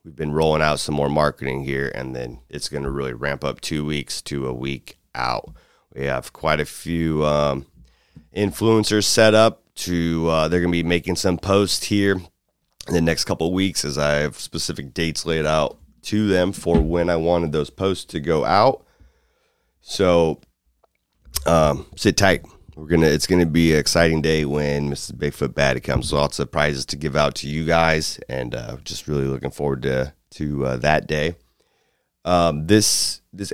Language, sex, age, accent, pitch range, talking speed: English, male, 30-49, American, 75-90 Hz, 190 wpm